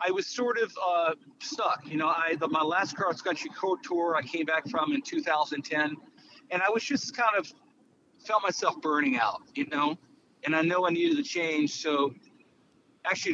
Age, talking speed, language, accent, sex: 40-59, 195 wpm, English, American, male